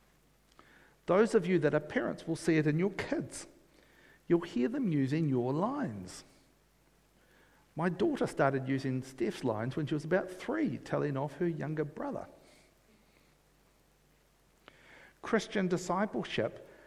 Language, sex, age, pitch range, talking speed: English, male, 50-69, 125-160 Hz, 130 wpm